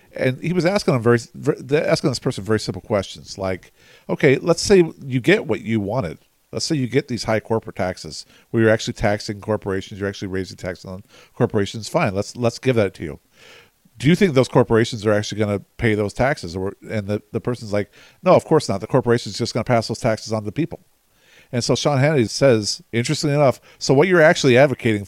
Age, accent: 50-69, American